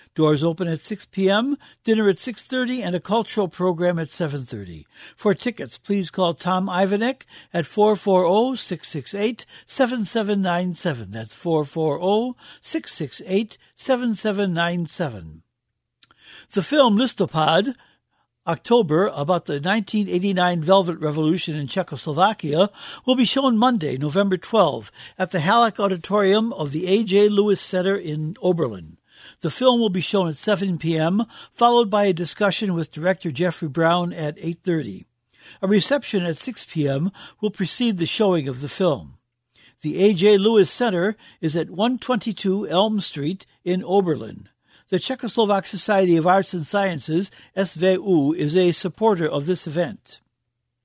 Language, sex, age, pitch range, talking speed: English, male, 60-79, 160-210 Hz, 125 wpm